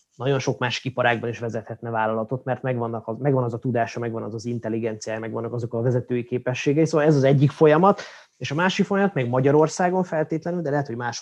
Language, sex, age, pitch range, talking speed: Hungarian, male, 20-39, 120-155 Hz, 210 wpm